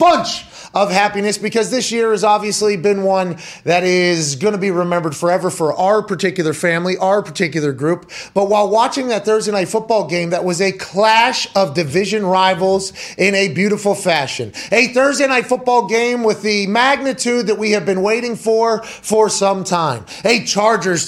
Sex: male